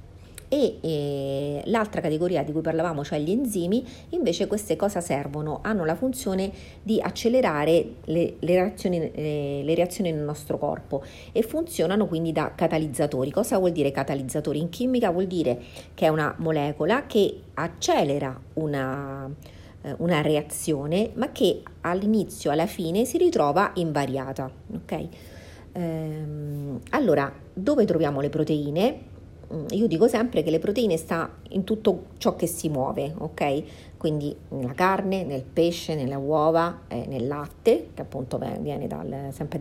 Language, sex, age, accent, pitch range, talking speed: Italian, female, 40-59, native, 145-190 Hz, 140 wpm